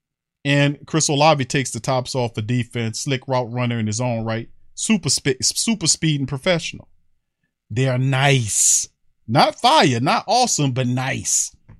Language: English